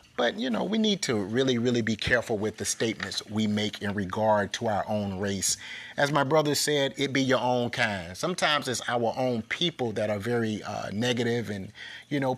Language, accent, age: English, American, 30-49